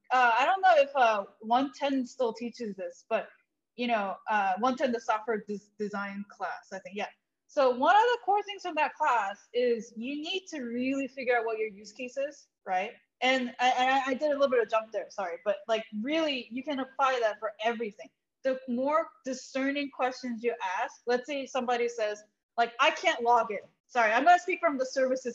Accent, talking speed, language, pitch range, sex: American, 215 wpm, English, 235-305 Hz, female